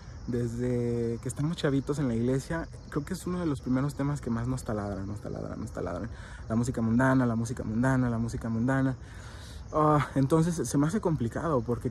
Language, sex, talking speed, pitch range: Spanish, male, 190 wpm, 110-140 Hz